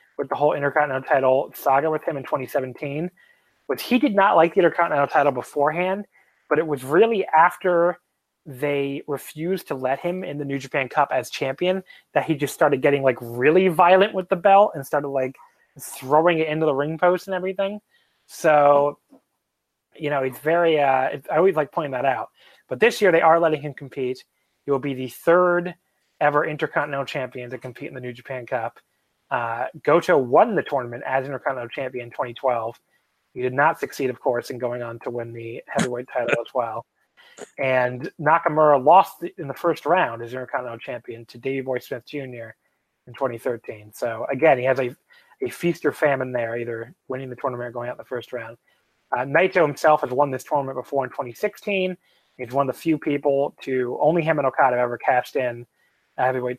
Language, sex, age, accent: English, male, 30-49, American